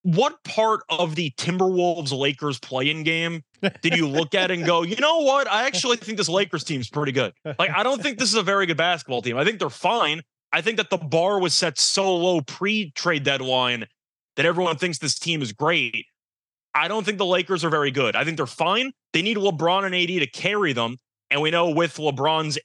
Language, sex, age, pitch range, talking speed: English, male, 20-39, 135-180 Hz, 230 wpm